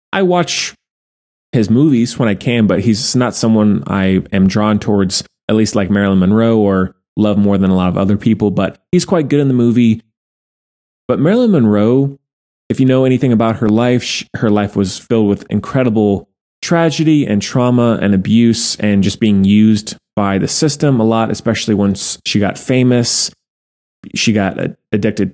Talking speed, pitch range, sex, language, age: 180 wpm, 100-125 Hz, male, English, 20-39